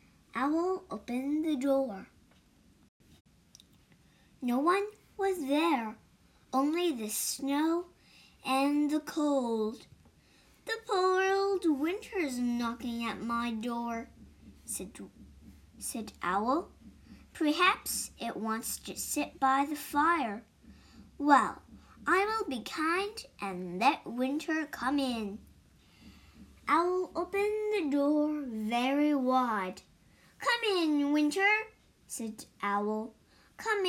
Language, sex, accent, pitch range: Chinese, male, American, 230-320 Hz